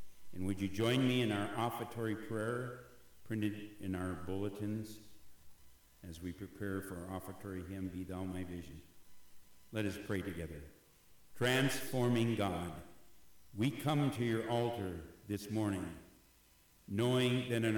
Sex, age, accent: male, 60-79, American